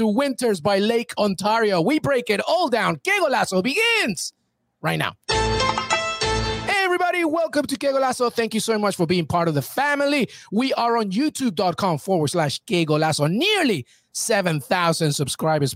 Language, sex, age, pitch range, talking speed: English, male, 30-49, 160-235 Hz, 160 wpm